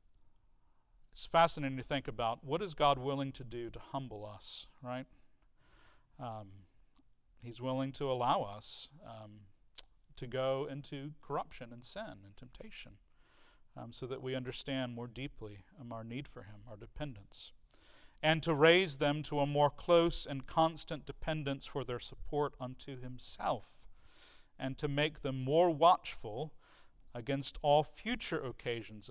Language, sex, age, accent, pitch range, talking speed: English, male, 40-59, American, 120-140 Hz, 140 wpm